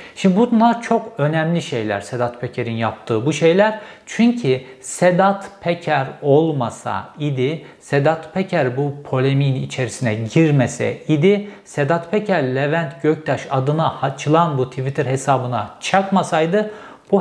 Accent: native